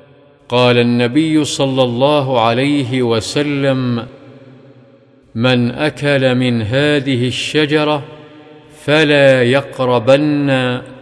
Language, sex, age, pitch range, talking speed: Arabic, male, 50-69, 120-140 Hz, 70 wpm